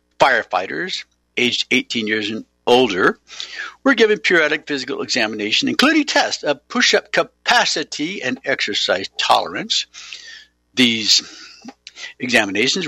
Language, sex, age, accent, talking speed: English, male, 60-79, American, 100 wpm